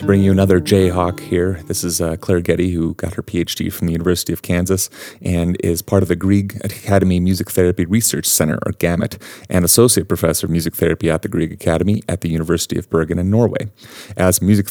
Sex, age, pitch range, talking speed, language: male, 30-49, 85-105 Hz, 210 wpm, English